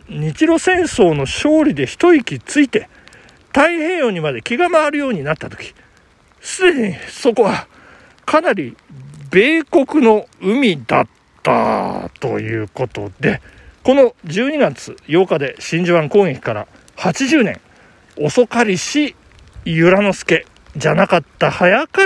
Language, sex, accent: Japanese, male, native